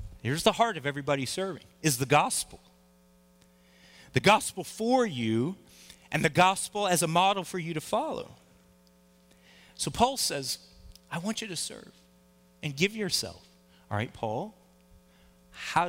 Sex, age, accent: male, 40-59, American